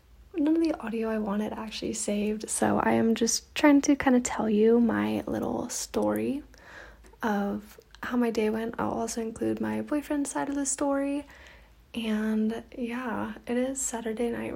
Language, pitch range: English, 220-290 Hz